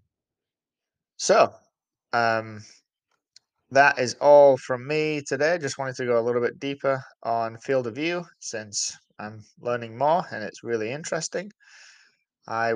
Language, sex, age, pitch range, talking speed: English, male, 20-39, 105-125 Hz, 135 wpm